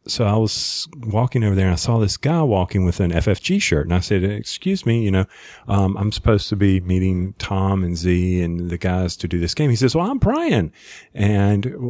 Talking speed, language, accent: 225 wpm, English, American